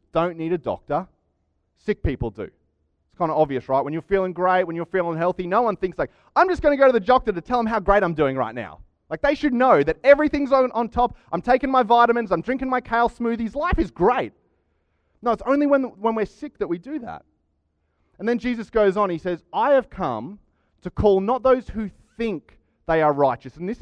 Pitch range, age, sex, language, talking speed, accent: 150-235 Hz, 30-49, male, English, 235 wpm, Australian